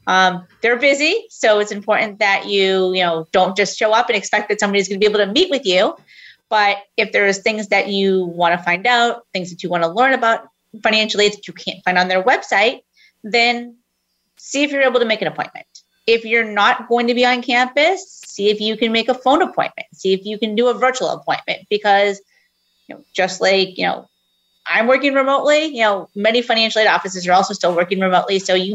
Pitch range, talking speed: 190-250 Hz, 225 wpm